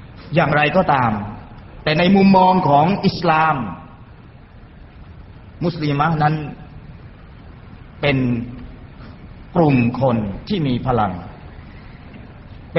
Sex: male